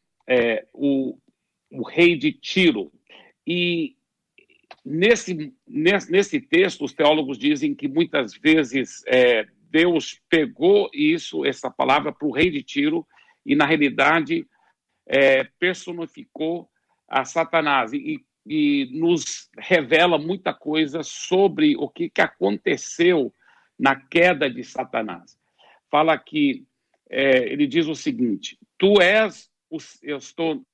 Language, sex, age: Portuguese, male, 60-79